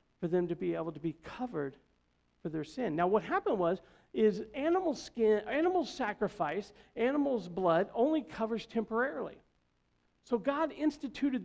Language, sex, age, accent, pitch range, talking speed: English, male, 50-69, American, 180-255 Hz, 145 wpm